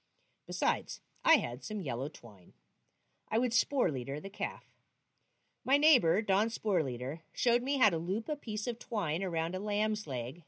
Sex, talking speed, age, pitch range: female, 170 wpm, 50-69, 160-240 Hz